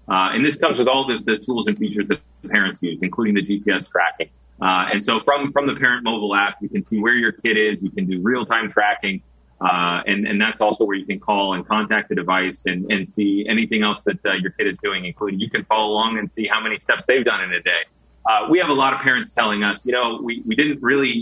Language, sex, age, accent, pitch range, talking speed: English, male, 30-49, American, 95-120 Hz, 265 wpm